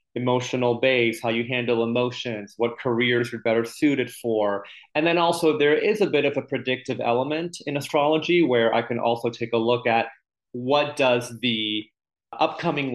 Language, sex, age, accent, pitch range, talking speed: English, male, 30-49, American, 115-135 Hz, 170 wpm